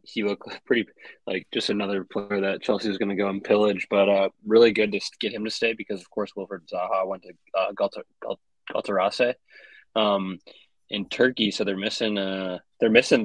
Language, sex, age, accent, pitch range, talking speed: English, male, 20-39, American, 95-110 Hz, 200 wpm